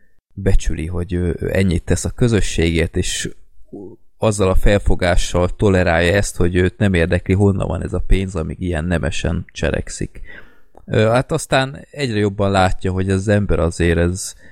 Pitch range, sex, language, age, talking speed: 85-100 Hz, male, Hungarian, 20-39, 150 wpm